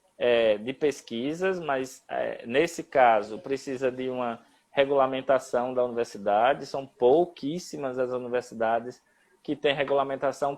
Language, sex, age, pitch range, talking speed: Portuguese, male, 20-39, 130-170 Hz, 100 wpm